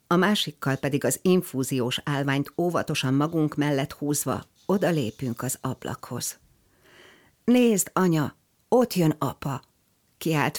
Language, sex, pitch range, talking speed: Hungarian, female, 125-155 Hz, 115 wpm